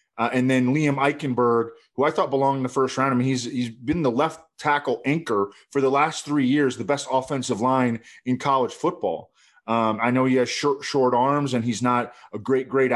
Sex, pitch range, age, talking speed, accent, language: male, 115-135 Hz, 20-39, 220 wpm, American, English